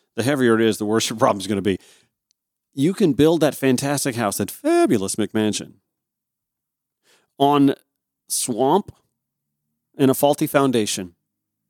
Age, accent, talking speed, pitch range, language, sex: 40-59, American, 140 wpm, 115-160 Hz, English, male